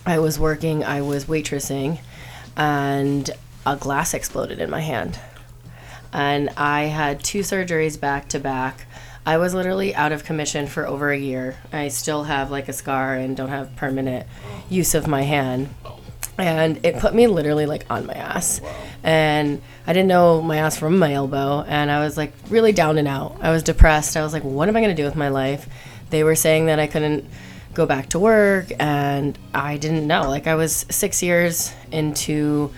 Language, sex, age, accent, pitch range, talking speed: English, female, 20-39, American, 140-160 Hz, 195 wpm